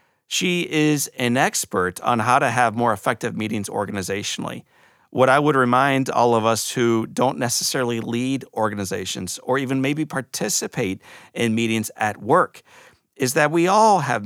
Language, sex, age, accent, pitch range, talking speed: English, male, 40-59, American, 110-130 Hz, 155 wpm